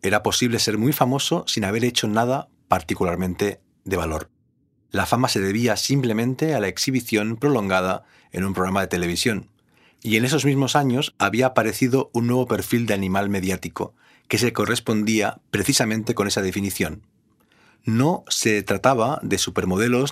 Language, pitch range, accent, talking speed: Spanish, 100-125 Hz, Spanish, 150 wpm